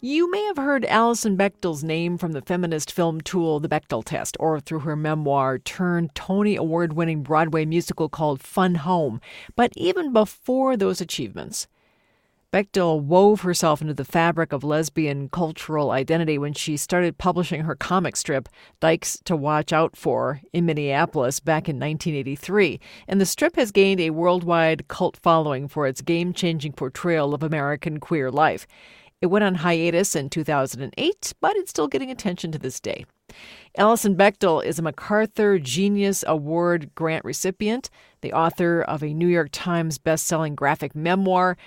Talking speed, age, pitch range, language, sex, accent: 155 wpm, 50-69, 155-190 Hz, English, female, American